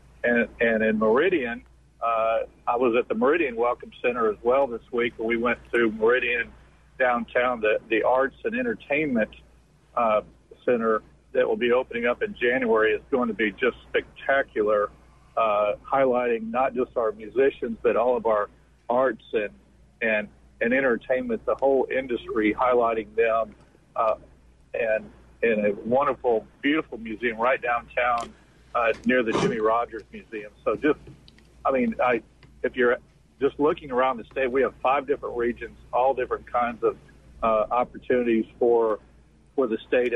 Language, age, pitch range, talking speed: English, 50-69, 110-135 Hz, 155 wpm